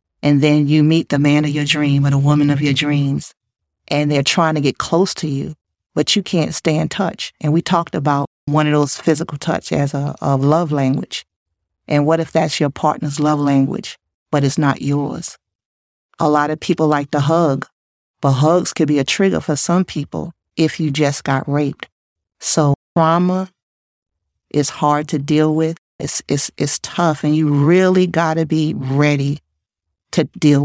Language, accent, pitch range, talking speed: English, American, 140-160 Hz, 185 wpm